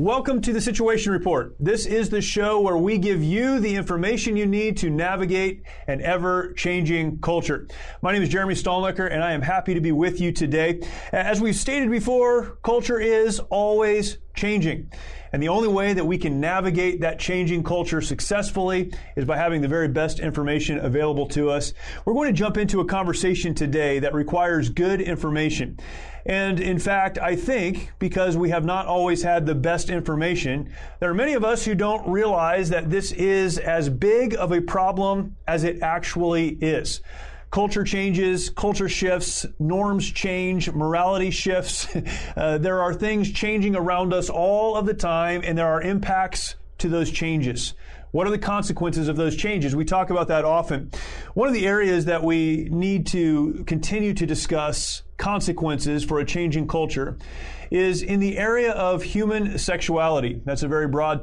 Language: English